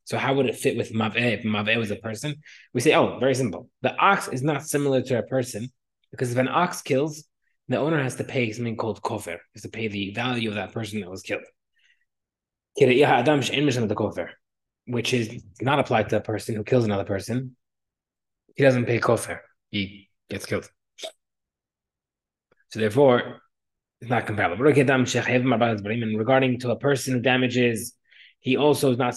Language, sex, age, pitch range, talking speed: English, male, 20-39, 110-130 Hz, 170 wpm